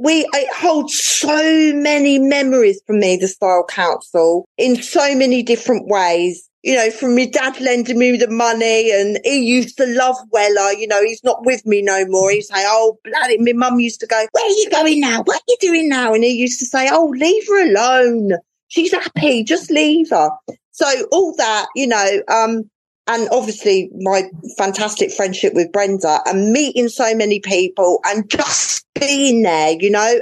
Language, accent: English, British